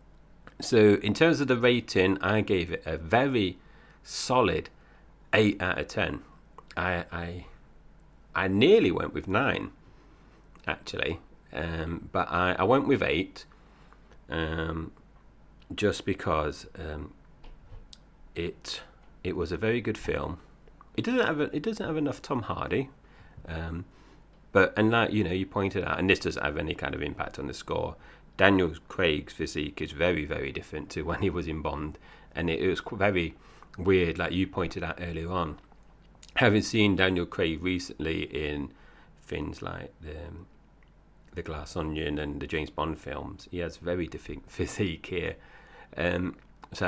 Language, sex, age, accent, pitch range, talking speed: English, male, 30-49, British, 80-100 Hz, 155 wpm